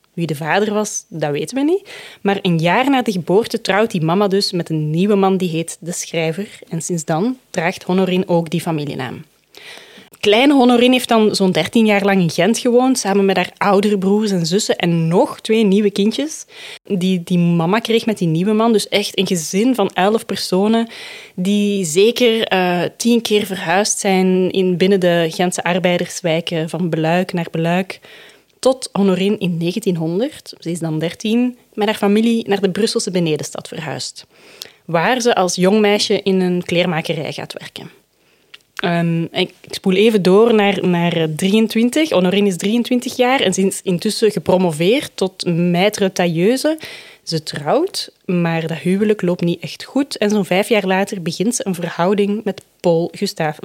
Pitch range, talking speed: 175-215 Hz, 170 wpm